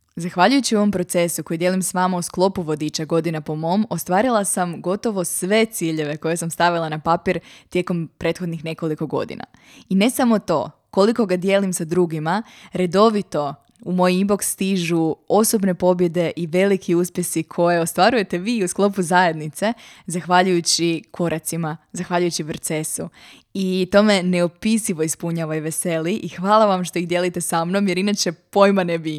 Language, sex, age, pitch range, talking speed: Croatian, female, 20-39, 170-195 Hz, 155 wpm